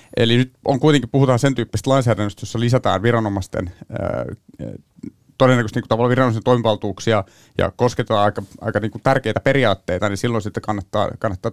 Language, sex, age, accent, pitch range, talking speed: Finnish, male, 30-49, native, 105-125 Hz, 140 wpm